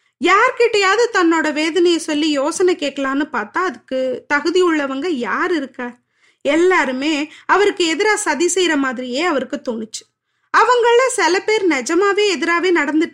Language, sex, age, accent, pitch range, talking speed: Tamil, female, 20-39, native, 275-370 Hz, 115 wpm